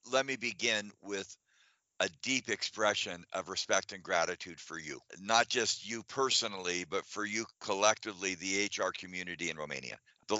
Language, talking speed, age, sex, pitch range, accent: Romanian, 155 wpm, 50-69, male, 95-115 Hz, American